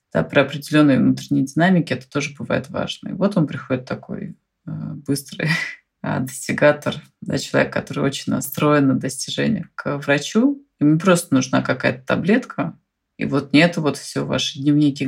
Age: 20-39